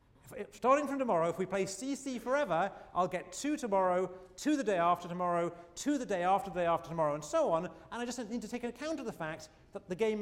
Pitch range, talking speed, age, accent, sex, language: 165-250 Hz, 240 wpm, 40-59, British, male, English